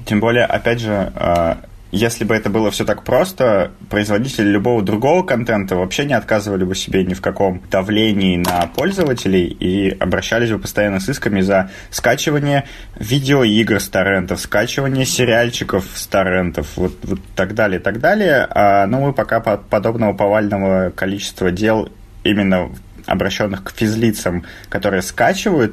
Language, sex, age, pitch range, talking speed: Russian, male, 20-39, 95-110 Hz, 140 wpm